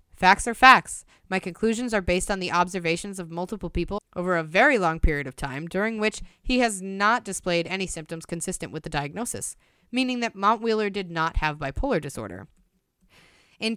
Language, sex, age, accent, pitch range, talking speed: English, female, 20-39, American, 165-210 Hz, 180 wpm